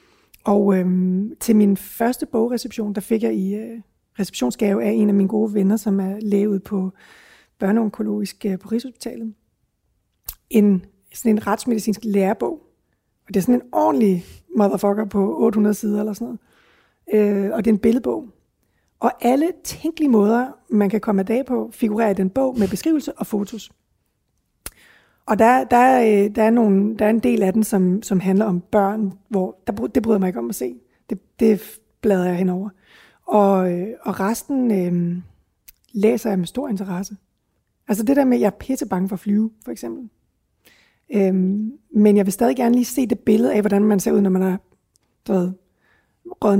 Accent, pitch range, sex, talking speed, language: native, 195-230 Hz, female, 180 wpm, Danish